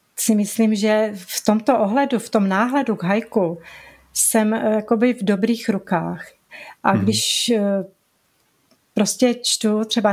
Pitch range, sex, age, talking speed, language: 205-235 Hz, female, 30-49, 125 wpm, Czech